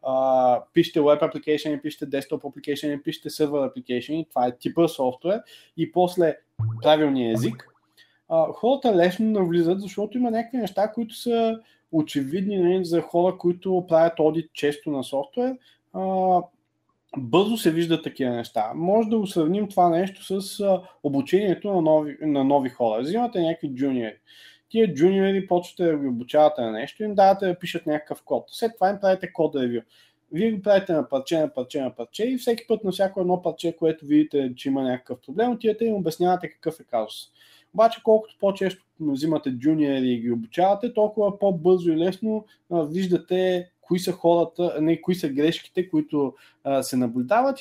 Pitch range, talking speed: 145-195 Hz, 165 wpm